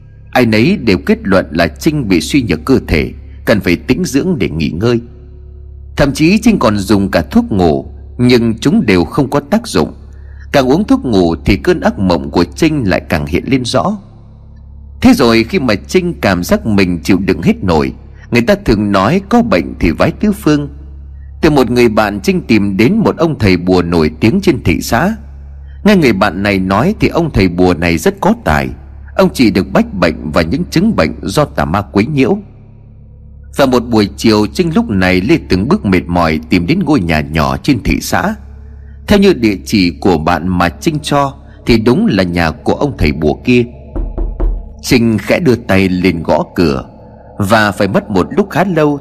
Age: 30-49